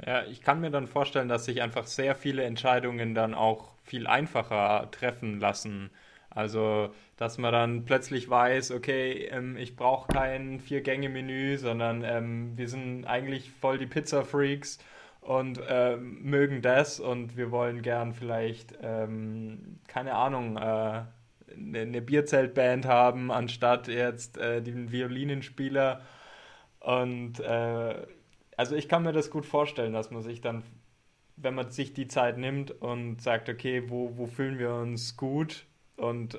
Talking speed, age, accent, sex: 145 wpm, 20-39, German, male